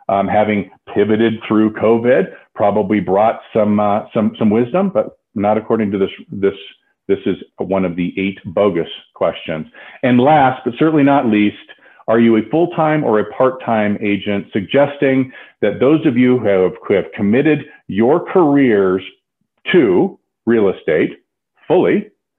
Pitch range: 95-130 Hz